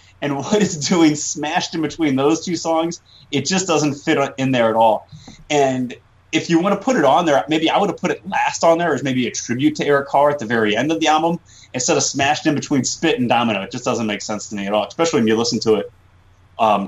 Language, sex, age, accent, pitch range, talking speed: English, male, 30-49, American, 105-140 Hz, 265 wpm